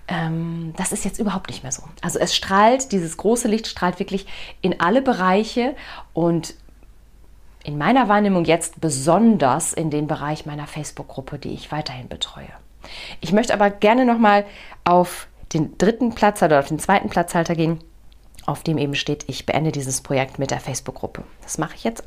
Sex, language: female, German